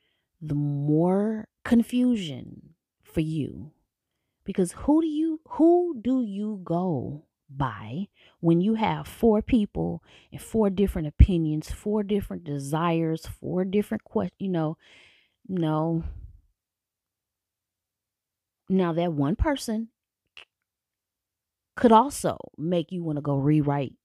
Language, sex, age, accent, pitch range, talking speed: English, female, 30-49, American, 145-195 Hz, 110 wpm